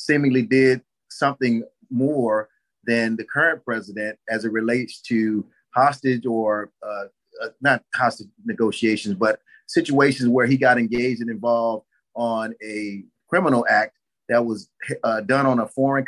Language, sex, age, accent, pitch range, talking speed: English, male, 30-49, American, 115-135 Hz, 140 wpm